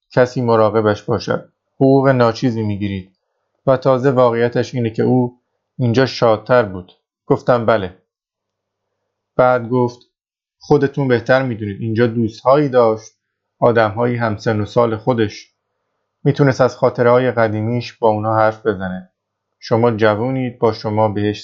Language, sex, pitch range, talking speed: Persian, male, 110-125 Hz, 125 wpm